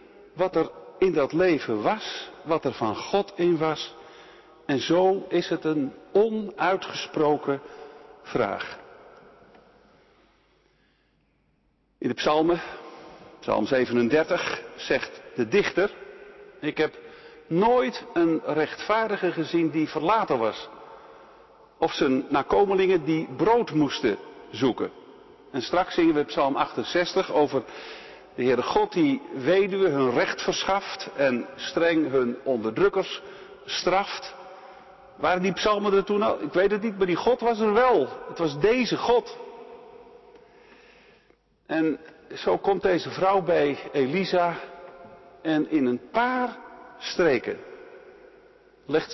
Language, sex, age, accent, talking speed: Dutch, male, 50-69, Dutch, 115 wpm